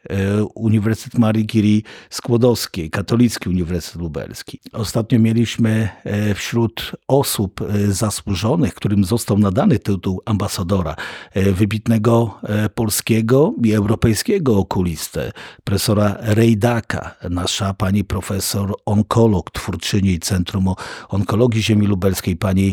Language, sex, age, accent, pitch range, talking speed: Polish, male, 50-69, native, 100-125 Hz, 90 wpm